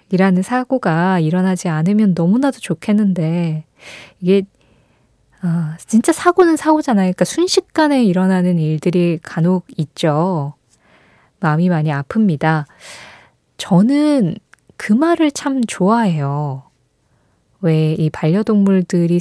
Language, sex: Korean, female